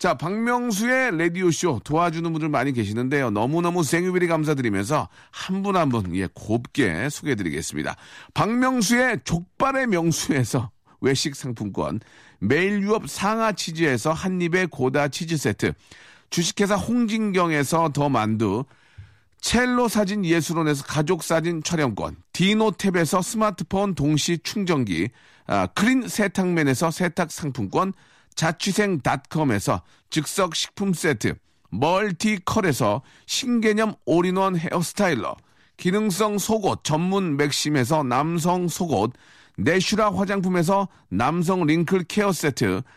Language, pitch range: Korean, 145-200 Hz